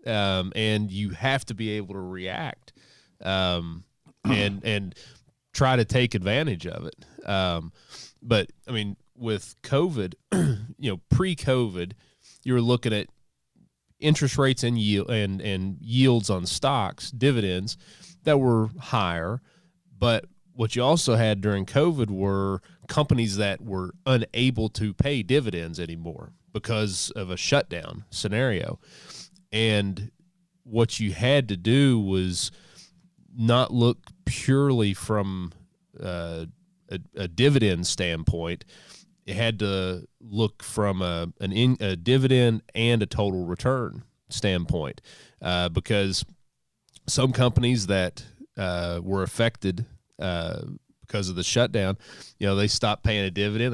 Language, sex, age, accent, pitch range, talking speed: English, male, 30-49, American, 95-125 Hz, 130 wpm